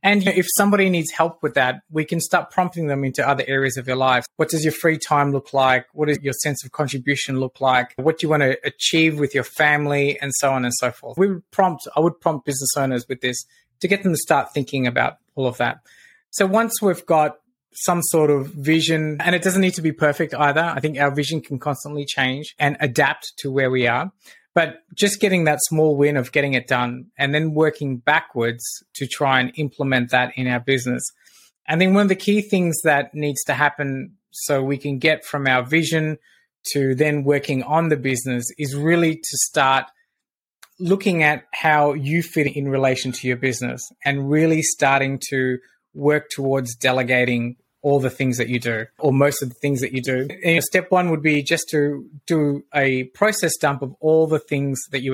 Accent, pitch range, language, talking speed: Australian, 135-160 Hz, English, 210 wpm